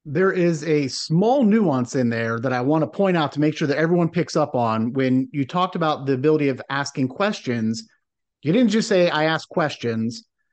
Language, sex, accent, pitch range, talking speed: English, male, American, 145-190 Hz, 210 wpm